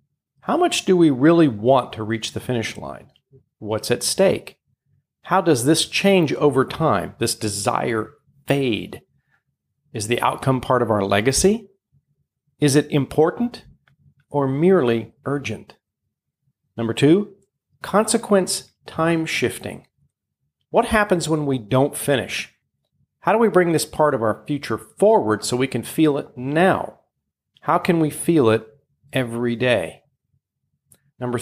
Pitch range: 125-160 Hz